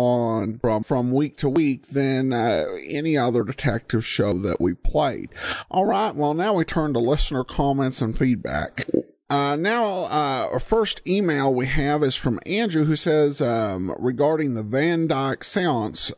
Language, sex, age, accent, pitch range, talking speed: English, male, 50-69, American, 125-170 Hz, 165 wpm